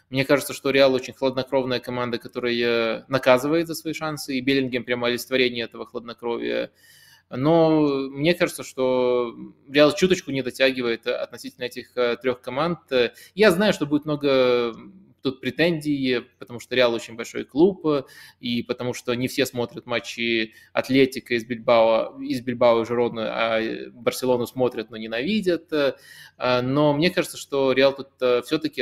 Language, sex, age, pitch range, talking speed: Russian, male, 20-39, 120-140 Hz, 145 wpm